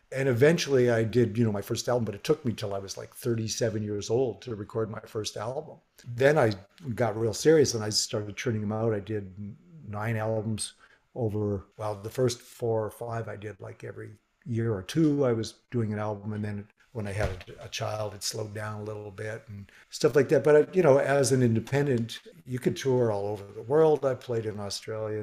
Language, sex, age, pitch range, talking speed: English, male, 50-69, 105-125 Hz, 220 wpm